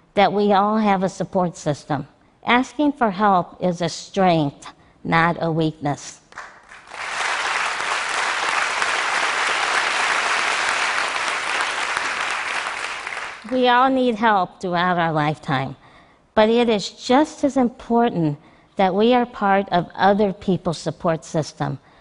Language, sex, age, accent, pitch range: Chinese, female, 50-69, American, 170-225 Hz